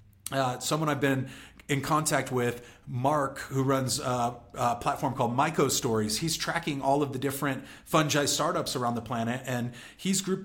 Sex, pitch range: male, 120-145 Hz